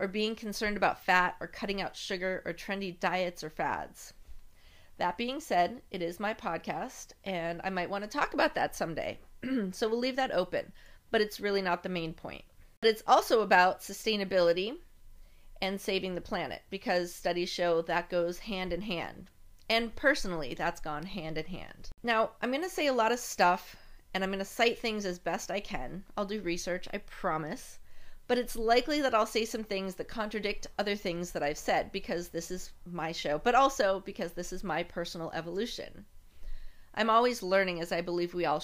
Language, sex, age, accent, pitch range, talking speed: English, female, 30-49, American, 175-220 Hz, 190 wpm